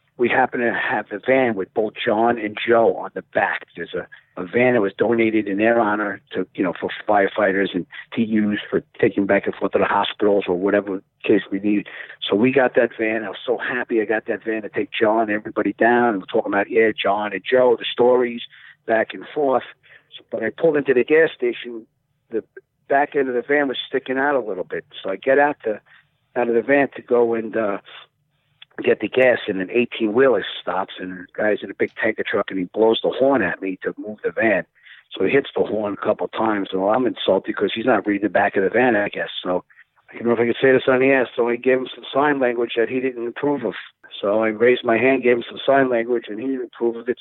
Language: English